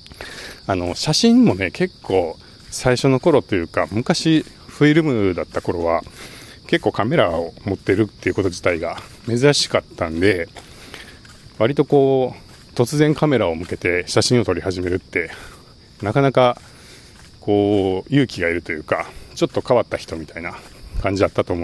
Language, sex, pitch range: Japanese, male, 100-130 Hz